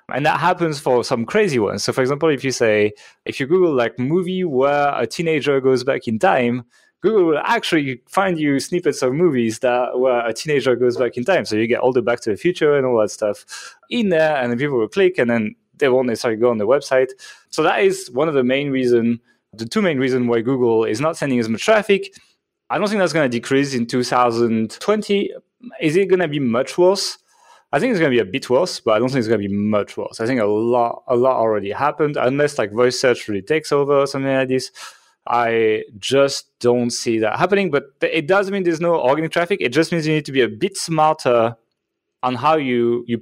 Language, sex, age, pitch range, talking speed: English, male, 20-39, 120-170 Hz, 235 wpm